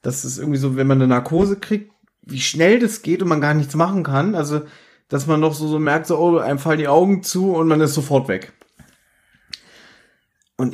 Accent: German